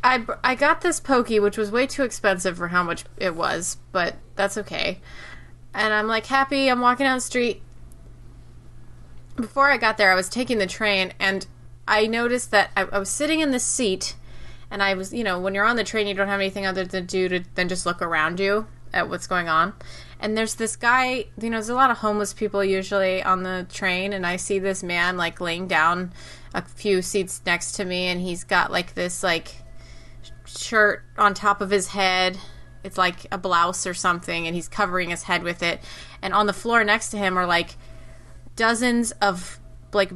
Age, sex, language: 20-39, female, English